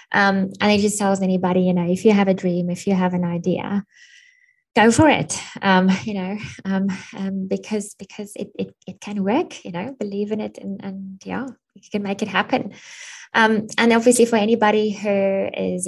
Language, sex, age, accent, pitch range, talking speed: English, female, 20-39, British, 185-215 Hz, 200 wpm